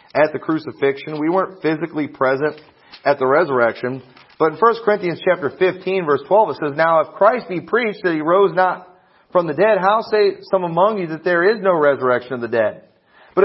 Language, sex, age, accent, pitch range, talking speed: English, male, 40-59, American, 150-195 Hz, 205 wpm